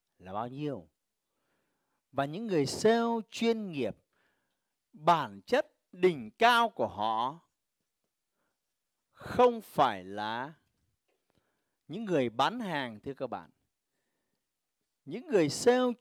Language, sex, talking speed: Vietnamese, male, 105 wpm